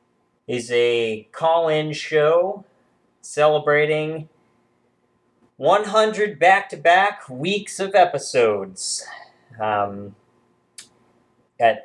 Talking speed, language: 60 wpm, English